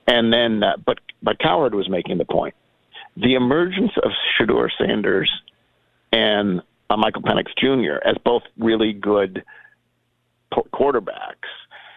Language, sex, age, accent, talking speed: English, male, 50-69, American, 125 wpm